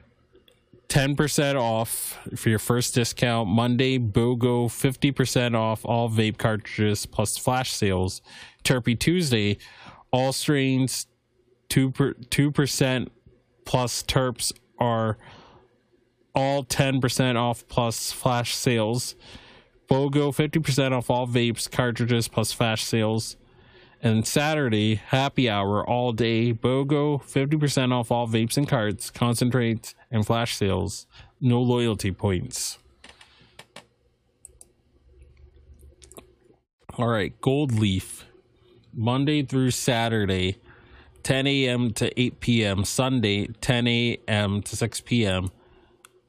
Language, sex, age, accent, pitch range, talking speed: English, male, 20-39, American, 110-130 Hz, 100 wpm